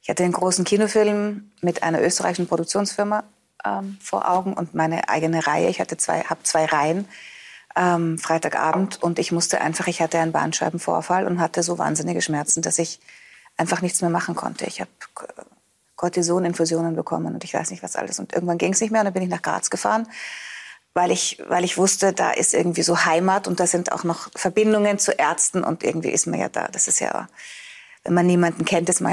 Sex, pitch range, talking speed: female, 165-195 Hz, 205 wpm